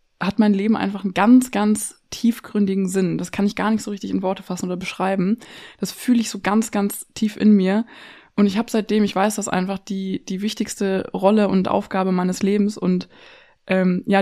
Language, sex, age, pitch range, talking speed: German, female, 20-39, 185-210 Hz, 205 wpm